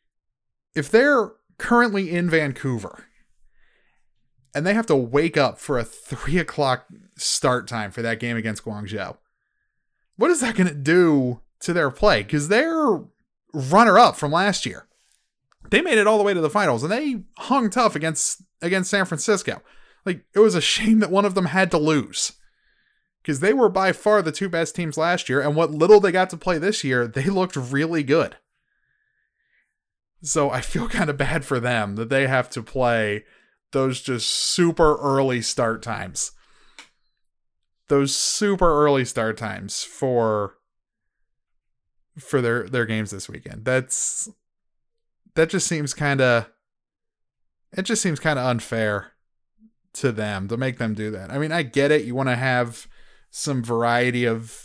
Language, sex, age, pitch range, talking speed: English, male, 30-49, 120-195 Hz, 170 wpm